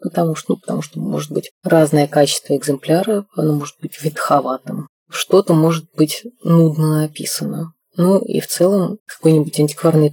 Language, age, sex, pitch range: Russian, 30-49, female, 150-185 Hz